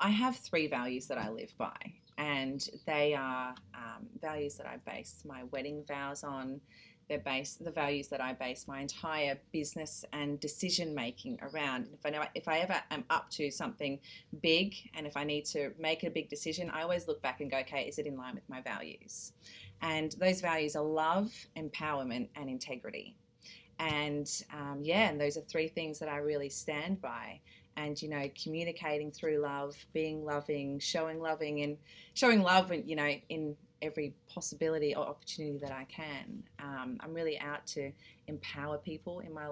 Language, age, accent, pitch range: English, 30-49, Australian, 140-160 Hz